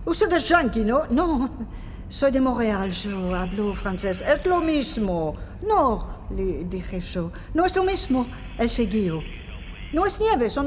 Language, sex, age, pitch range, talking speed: Spanish, female, 50-69, 205-330 Hz, 155 wpm